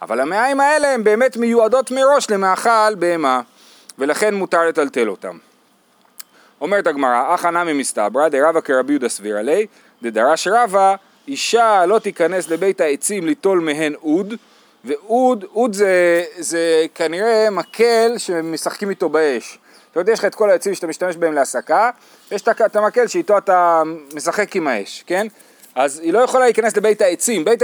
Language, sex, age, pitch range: Hebrew, male, 30-49, 175-235 Hz